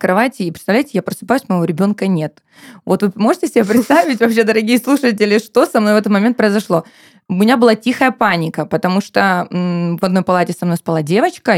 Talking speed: 190 wpm